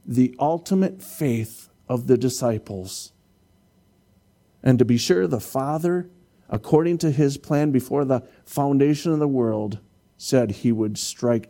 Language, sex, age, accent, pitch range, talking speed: English, male, 50-69, American, 95-120 Hz, 135 wpm